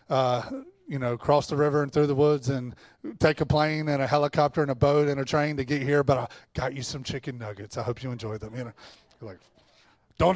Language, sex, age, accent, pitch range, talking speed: English, male, 30-49, American, 130-160 Hz, 245 wpm